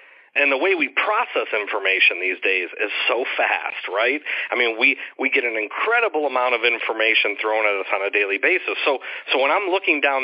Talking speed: 205 wpm